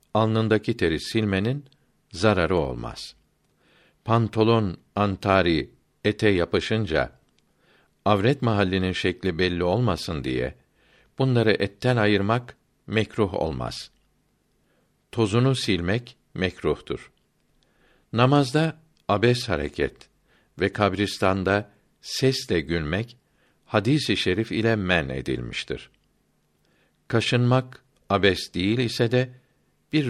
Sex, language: male, Turkish